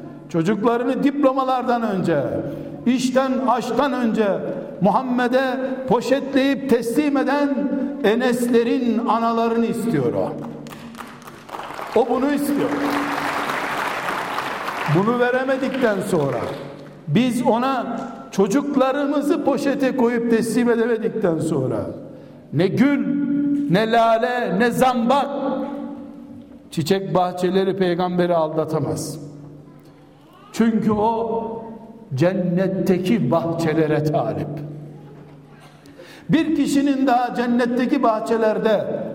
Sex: male